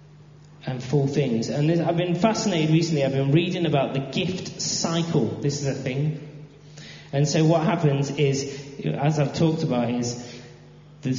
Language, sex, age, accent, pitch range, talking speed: English, male, 20-39, British, 135-155 Hz, 160 wpm